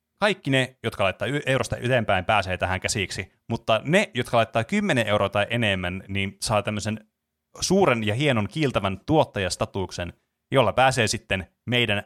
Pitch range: 100-130 Hz